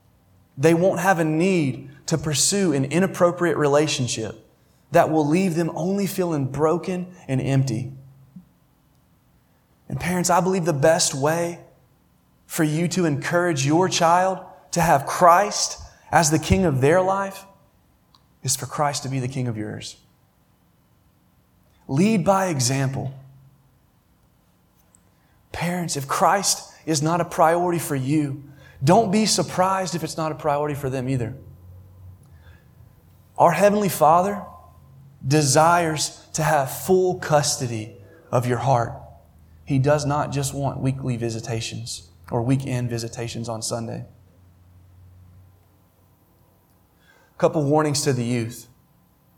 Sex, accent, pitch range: male, American, 120-170 Hz